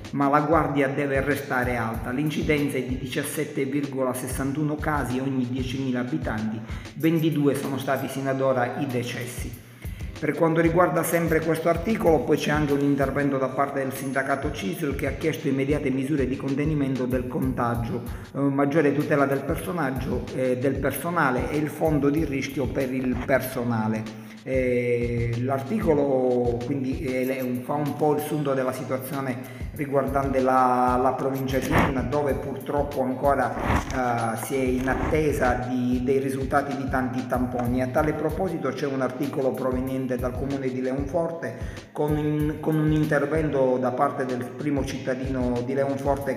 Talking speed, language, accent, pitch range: 140 wpm, Italian, native, 125-145 Hz